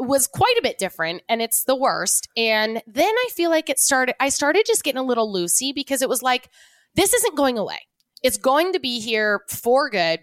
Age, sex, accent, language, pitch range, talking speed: 20-39, female, American, English, 210-315 Hz, 225 wpm